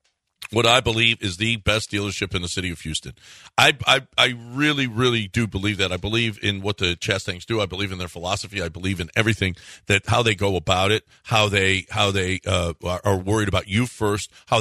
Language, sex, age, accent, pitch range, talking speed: English, male, 50-69, American, 95-120 Hz, 220 wpm